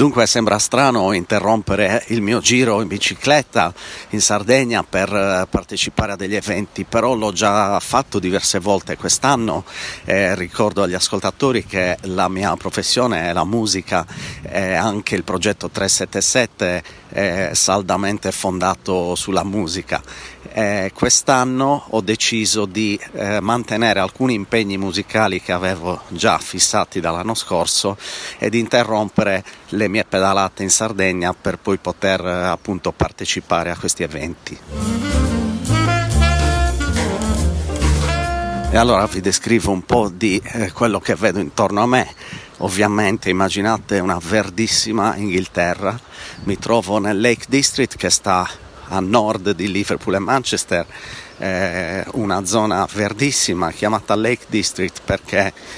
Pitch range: 90-110 Hz